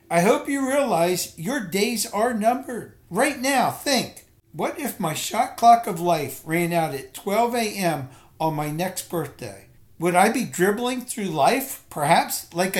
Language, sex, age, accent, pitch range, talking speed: English, male, 60-79, American, 155-230 Hz, 165 wpm